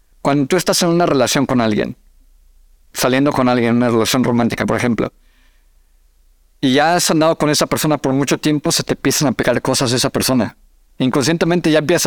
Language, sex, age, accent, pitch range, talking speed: Spanish, male, 50-69, Mexican, 125-160 Hz, 195 wpm